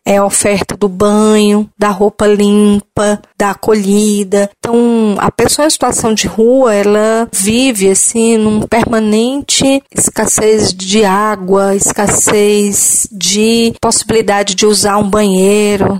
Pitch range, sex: 200-230 Hz, female